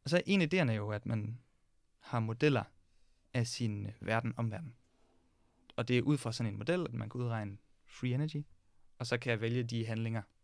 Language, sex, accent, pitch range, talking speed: Danish, male, native, 105-125 Hz, 205 wpm